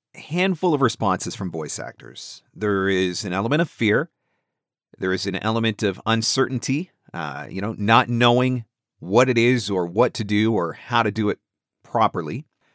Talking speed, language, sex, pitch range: 170 wpm, English, male, 100-130 Hz